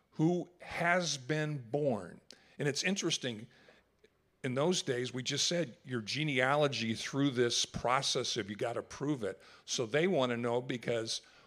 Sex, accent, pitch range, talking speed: male, American, 125-150 Hz, 155 wpm